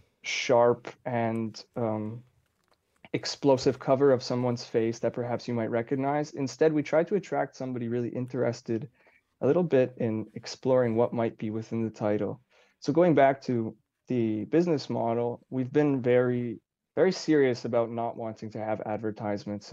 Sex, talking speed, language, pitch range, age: male, 150 wpm, English, 115-130 Hz, 20-39